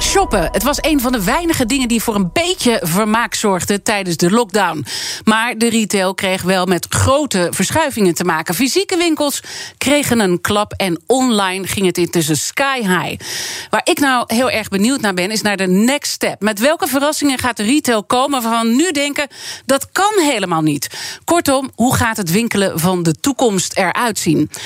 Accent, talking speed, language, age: Dutch, 185 wpm, Dutch, 40-59